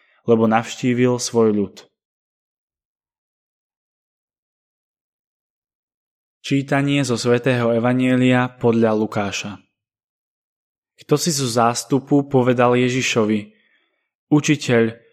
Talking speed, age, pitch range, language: 65 wpm, 10-29, 115-135 Hz, Slovak